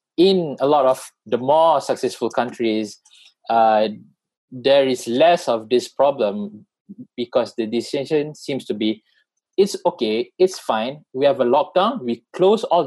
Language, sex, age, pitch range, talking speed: English, male, 20-39, 110-175 Hz, 150 wpm